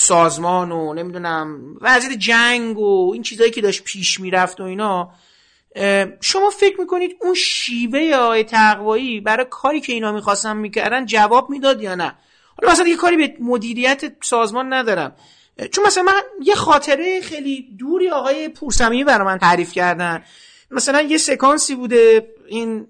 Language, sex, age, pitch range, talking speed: Persian, male, 40-59, 190-255 Hz, 150 wpm